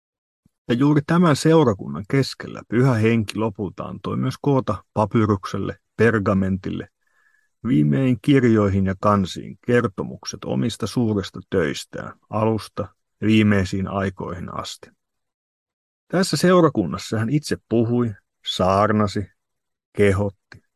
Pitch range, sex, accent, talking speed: 100-125 Hz, male, native, 95 wpm